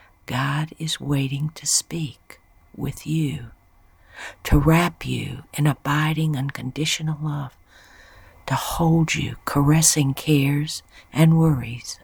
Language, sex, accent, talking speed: English, female, American, 105 wpm